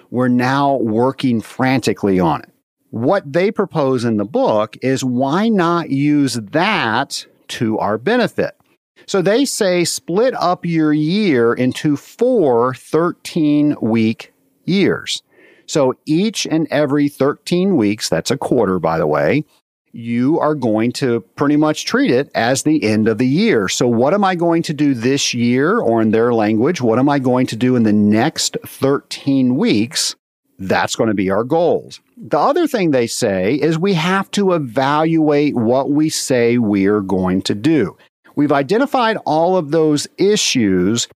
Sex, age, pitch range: male, 50-69, 115-160 Hz